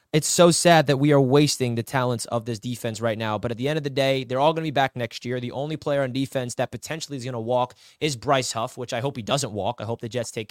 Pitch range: 125-160 Hz